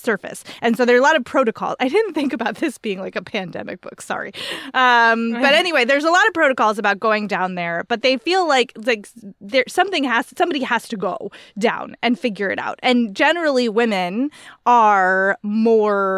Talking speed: 195 wpm